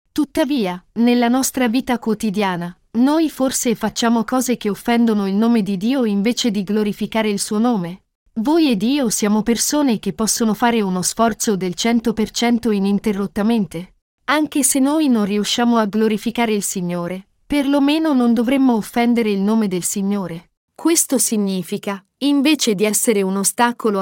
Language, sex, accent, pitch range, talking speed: Italian, female, native, 205-255 Hz, 145 wpm